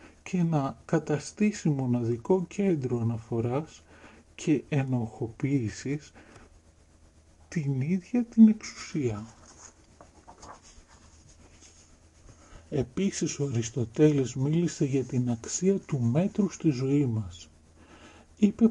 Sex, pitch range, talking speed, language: male, 110-160 Hz, 80 wpm, Greek